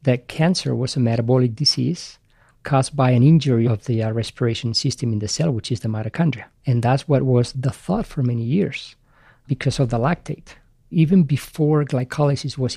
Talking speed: 185 wpm